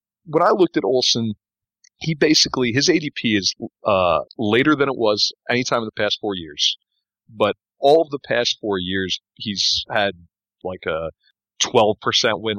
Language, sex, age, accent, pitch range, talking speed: English, male, 40-59, American, 95-115 Hz, 180 wpm